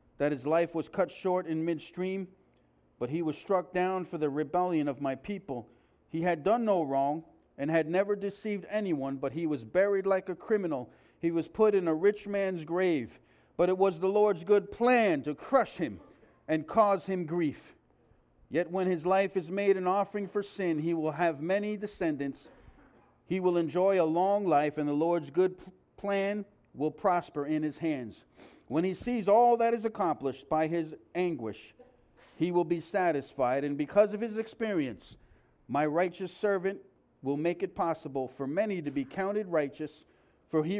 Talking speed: 180 wpm